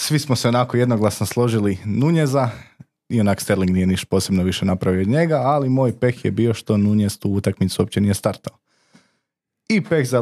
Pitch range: 100-125 Hz